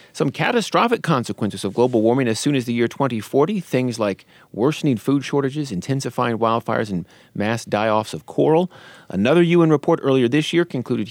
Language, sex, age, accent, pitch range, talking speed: English, male, 40-59, American, 110-150 Hz, 170 wpm